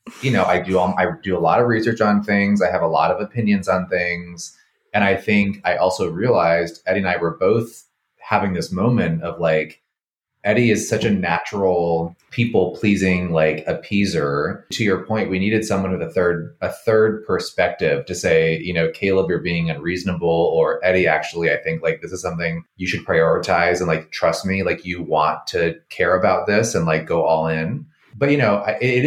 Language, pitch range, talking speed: English, 85-110 Hz, 200 wpm